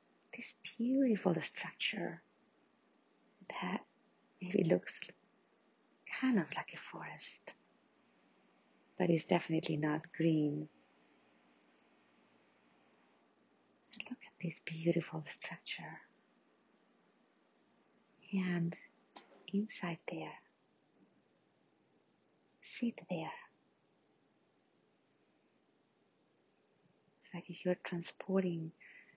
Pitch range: 150-180 Hz